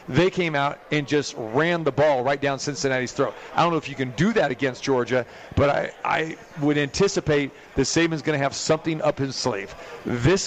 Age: 40-59